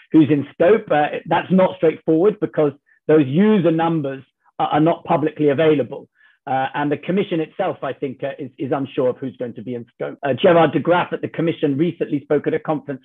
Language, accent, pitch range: English, British, 140-170 Hz